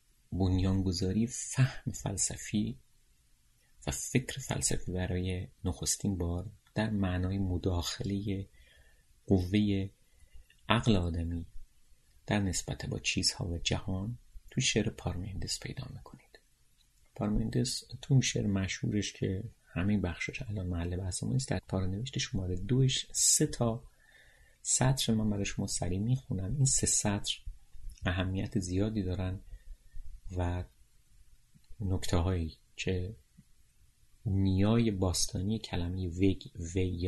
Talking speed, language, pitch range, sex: 100 wpm, Persian, 90-110 Hz, male